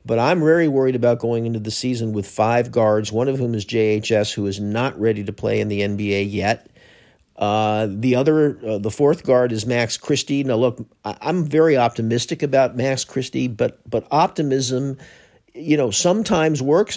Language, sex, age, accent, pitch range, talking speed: English, male, 50-69, American, 115-155 Hz, 185 wpm